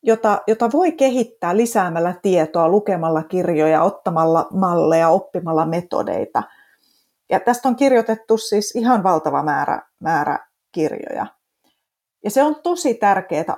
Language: Finnish